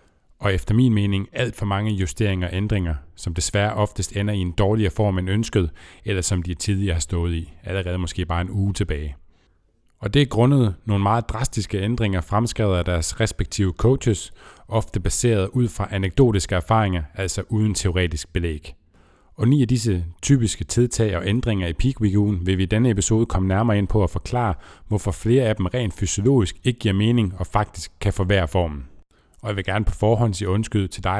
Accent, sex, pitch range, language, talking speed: native, male, 90-105 Hz, Danish, 195 wpm